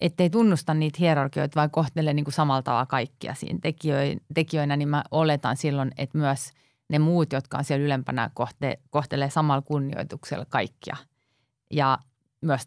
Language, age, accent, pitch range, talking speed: Finnish, 30-49, native, 140-160 Hz, 140 wpm